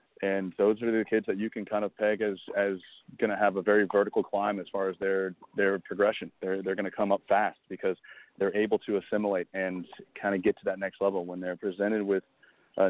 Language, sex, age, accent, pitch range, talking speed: English, male, 30-49, American, 90-100 Hz, 235 wpm